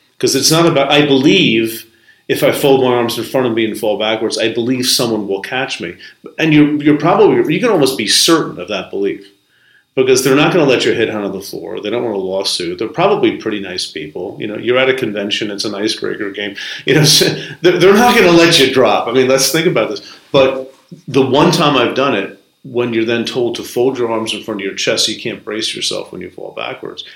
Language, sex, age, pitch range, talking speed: English, male, 40-59, 105-135 Hz, 250 wpm